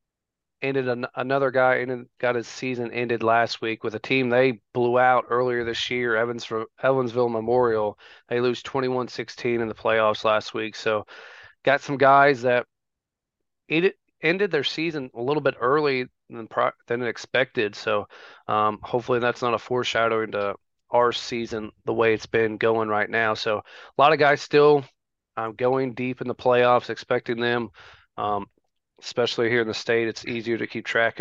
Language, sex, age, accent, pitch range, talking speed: English, male, 30-49, American, 110-125 Hz, 175 wpm